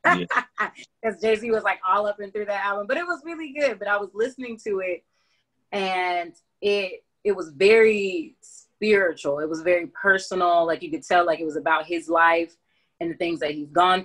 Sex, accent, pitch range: female, American, 160-190 Hz